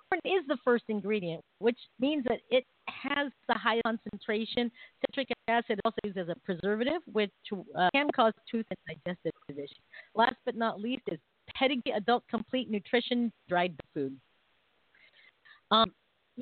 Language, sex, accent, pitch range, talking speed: English, female, American, 190-255 Hz, 145 wpm